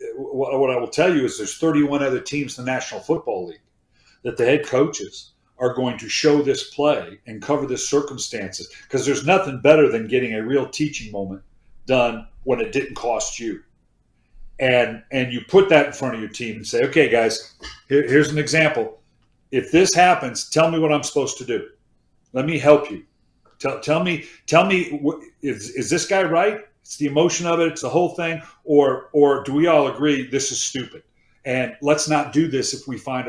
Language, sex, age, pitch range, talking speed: English, male, 50-69, 130-160 Hz, 205 wpm